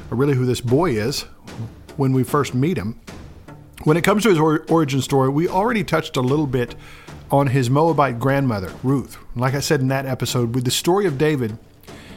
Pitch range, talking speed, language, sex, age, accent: 125-155 Hz, 190 wpm, English, male, 50-69, American